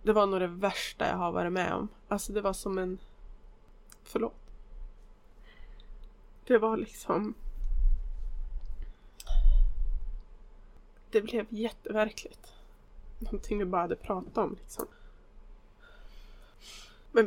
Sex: female